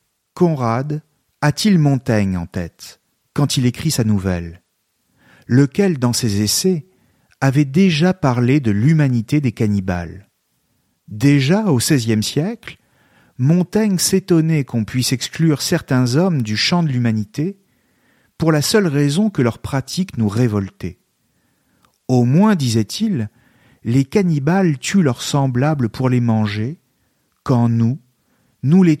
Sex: male